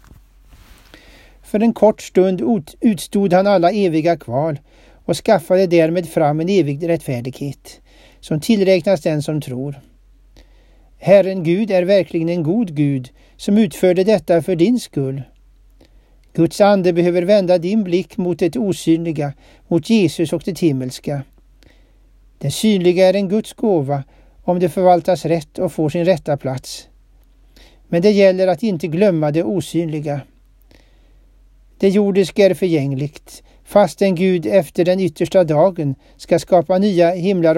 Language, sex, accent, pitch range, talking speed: Swedish, male, native, 150-195 Hz, 135 wpm